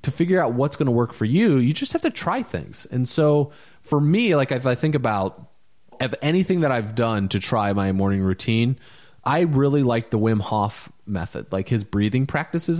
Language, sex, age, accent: English, male, 30-49, American